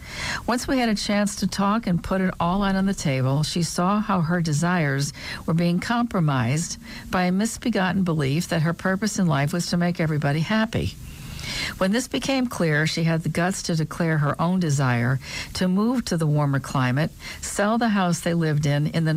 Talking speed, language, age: 200 wpm, English, 60-79